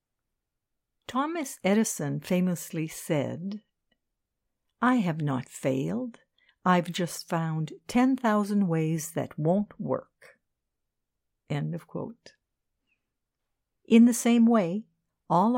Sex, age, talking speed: female, 60-79, 90 wpm